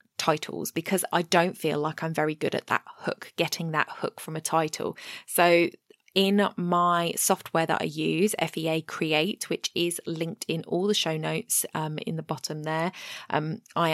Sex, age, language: female, 20-39, English